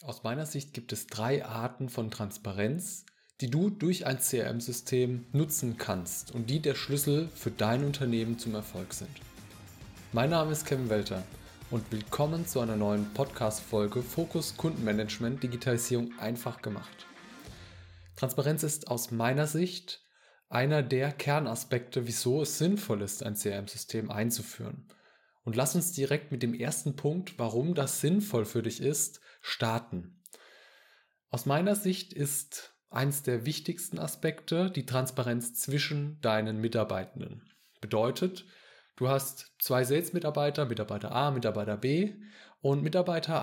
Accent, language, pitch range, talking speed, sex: German, German, 115-150 Hz, 135 wpm, male